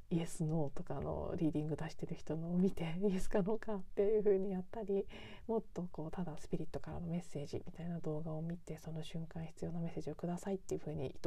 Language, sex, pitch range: Japanese, female, 165-225 Hz